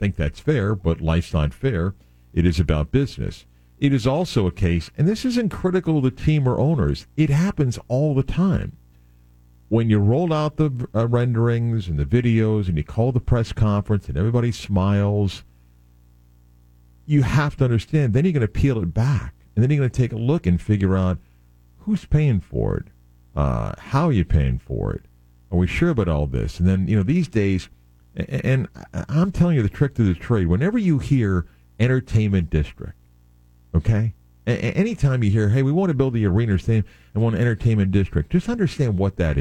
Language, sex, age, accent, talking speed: English, male, 50-69, American, 195 wpm